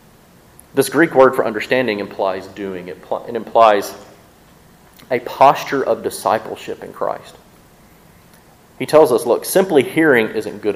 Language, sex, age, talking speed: English, male, 30-49, 135 wpm